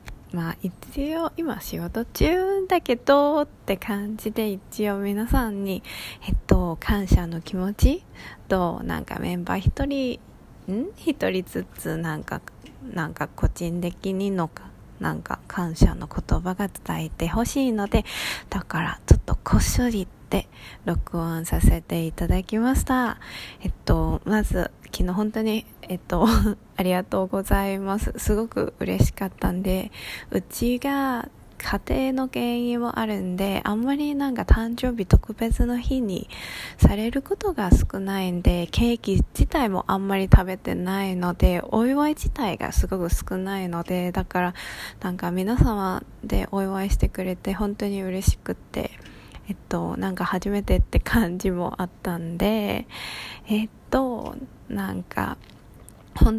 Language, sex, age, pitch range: Japanese, female, 20-39, 175-230 Hz